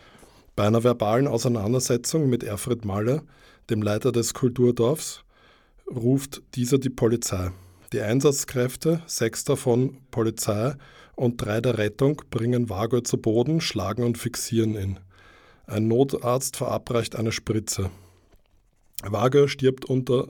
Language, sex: German, male